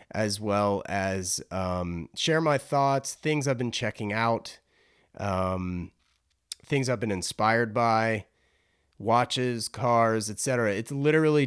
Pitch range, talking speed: 100-125 Hz, 120 wpm